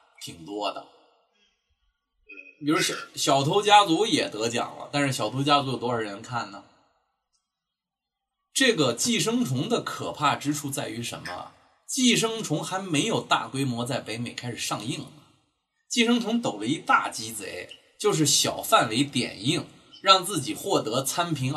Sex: male